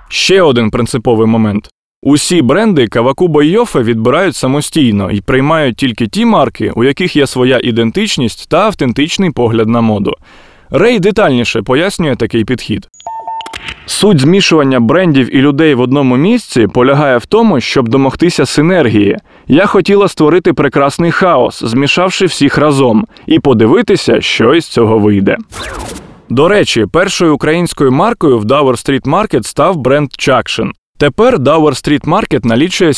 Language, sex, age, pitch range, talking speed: Ukrainian, male, 20-39, 125-185 Hz, 135 wpm